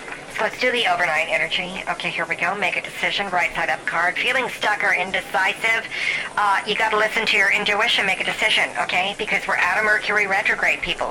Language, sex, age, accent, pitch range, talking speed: English, male, 50-69, American, 180-215 Hz, 195 wpm